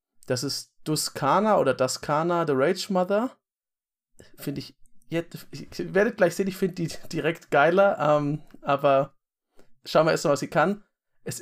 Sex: male